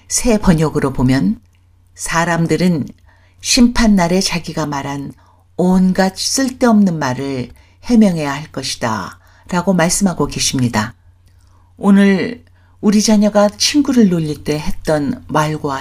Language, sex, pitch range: Korean, female, 115-195 Hz